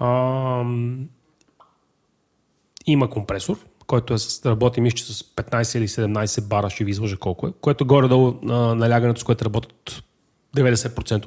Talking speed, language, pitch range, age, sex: 130 wpm, Bulgarian, 115-145 Hz, 30-49, male